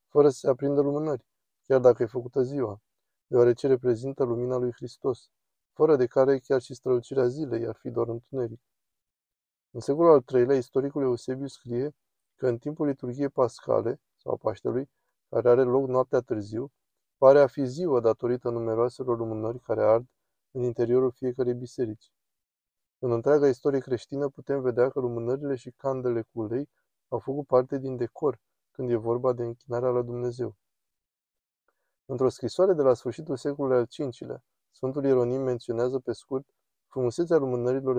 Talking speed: 155 wpm